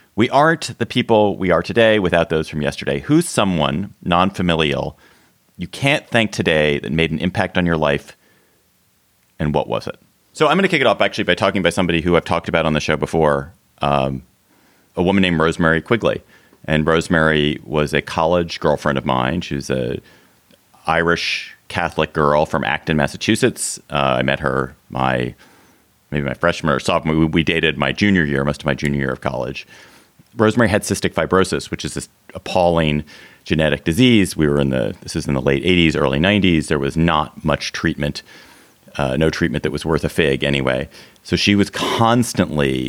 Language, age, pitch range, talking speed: English, 30-49, 70-90 Hz, 190 wpm